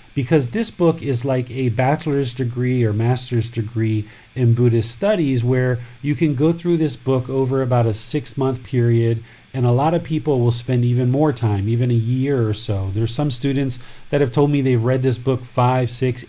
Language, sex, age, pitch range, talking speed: English, male, 40-59, 120-140 Hz, 200 wpm